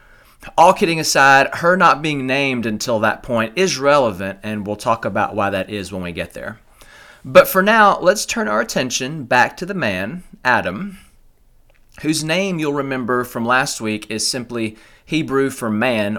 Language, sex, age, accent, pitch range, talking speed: English, male, 30-49, American, 115-155 Hz, 175 wpm